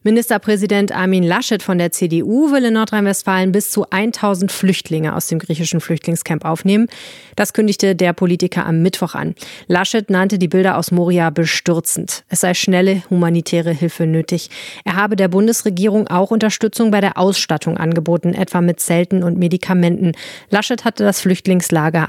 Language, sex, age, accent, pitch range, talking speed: German, female, 30-49, German, 170-210 Hz, 155 wpm